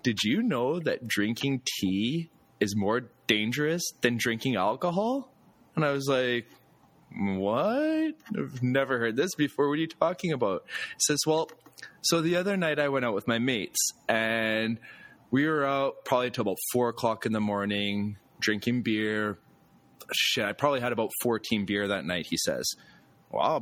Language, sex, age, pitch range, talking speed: English, male, 20-39, 115-160 Hz, 170 wpm